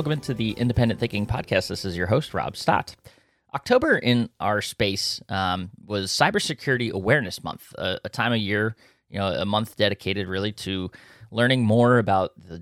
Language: English